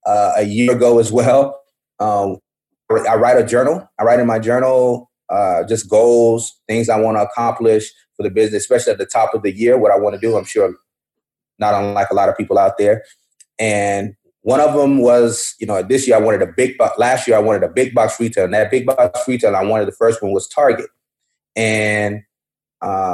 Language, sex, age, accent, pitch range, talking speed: English, male, 30-49, American, 105-130 Hz, 220 wpm